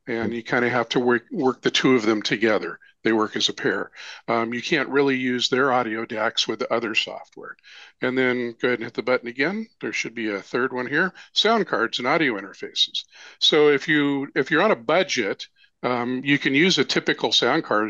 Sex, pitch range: male, 115-135 Hz